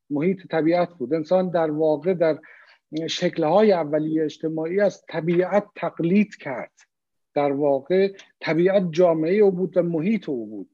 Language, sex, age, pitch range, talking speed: Persian, male, 50-69, 150-190 Hz, 125 wpm